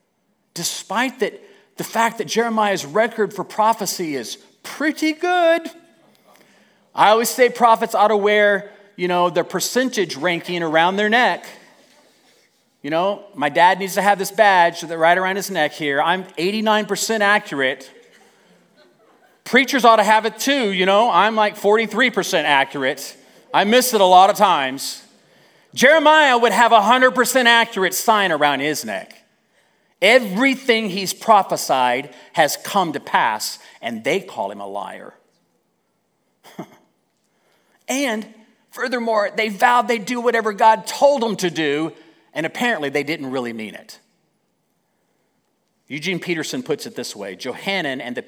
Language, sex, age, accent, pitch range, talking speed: English, male, 40-59, American, 165-230 Hz, 145 wpm